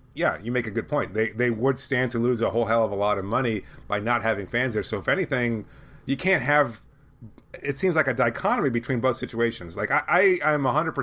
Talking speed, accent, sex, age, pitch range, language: 235 wpm, American, male, 30-49, 110-135 Hz, English